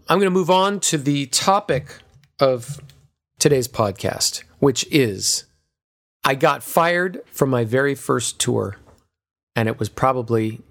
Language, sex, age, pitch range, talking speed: English, male, 40-59, 105-130 Hz, 140 wpm